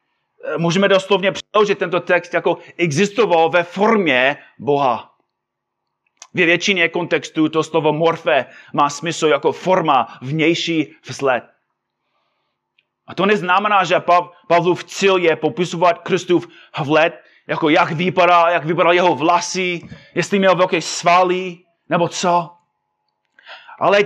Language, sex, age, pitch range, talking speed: Czech, male, 30-49, 175-215 Hz, 115 wpm